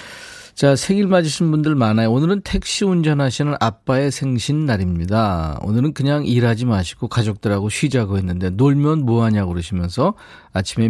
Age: 40-59